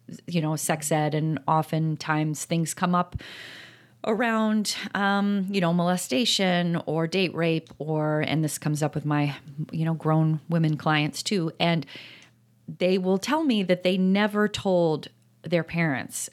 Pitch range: 155-185 Hz